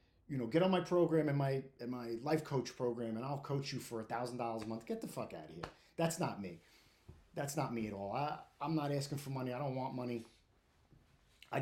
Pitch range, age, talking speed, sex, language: 115-165 Hz, 30-49, 240 wpm, male, English